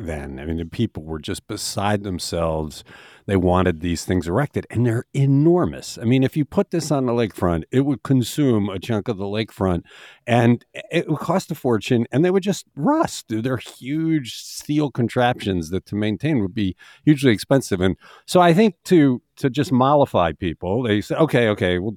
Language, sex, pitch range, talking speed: English, male, 100-150 Hz, 190 wpm